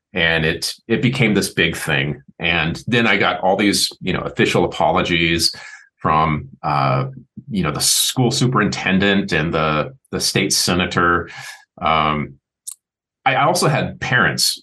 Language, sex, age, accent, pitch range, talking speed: English, male, 30-49, American, 95-130 Hz, 140 wpm